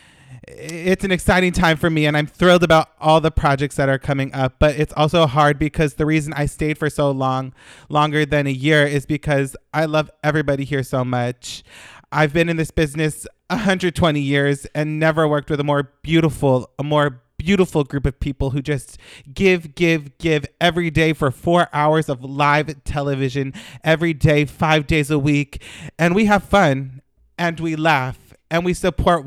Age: 30-49